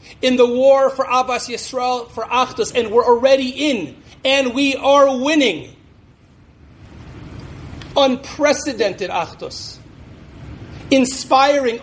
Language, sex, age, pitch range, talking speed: English, male, 40-59, 200-255 Hz, 95 wpm